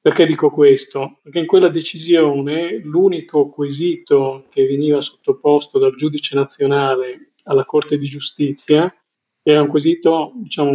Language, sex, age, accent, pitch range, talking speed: Italian, male, 40-59, native, 140-165 Hz, 130 wpm